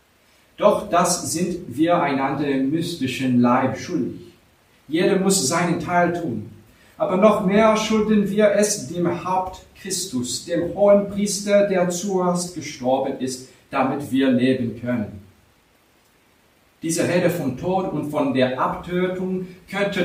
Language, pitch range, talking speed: English, 130-185 Hz, 130 wpm